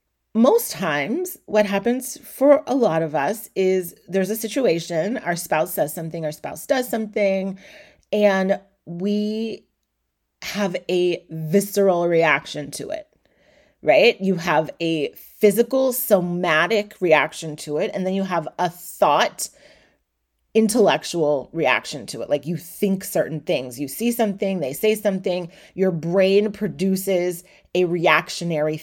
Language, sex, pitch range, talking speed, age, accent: English, female, 175-225 Hz, 135 wpm, 30-49, American